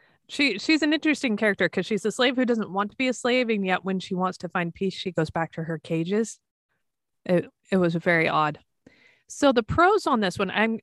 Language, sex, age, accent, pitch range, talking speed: English, female, 20-39, American, 190-250 Hz, 235 wpm